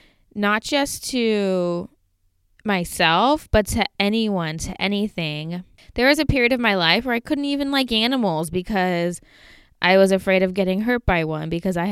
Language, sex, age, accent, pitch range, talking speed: English, female, 20-39, American, 175-225 Hz, 165 wpm